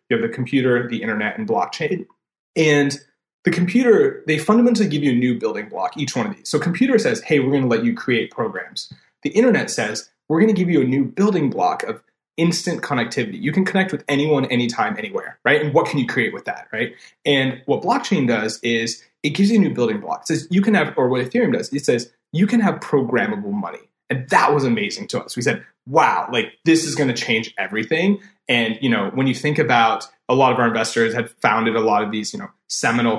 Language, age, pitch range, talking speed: English, 30-49, 120-190 Hz, 235 wpm